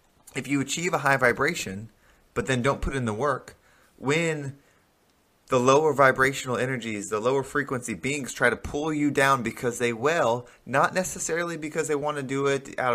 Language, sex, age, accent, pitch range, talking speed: English, male, 20-39, American, 115-145 Hz, 180 wpm